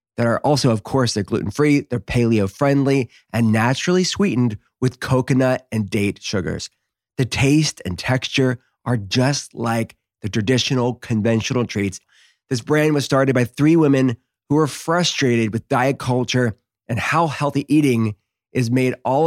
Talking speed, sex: 150 wpm, male